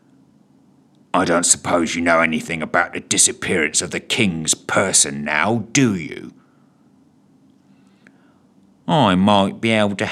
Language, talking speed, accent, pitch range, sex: English, 125 wpm, British, 90-130 Hz, male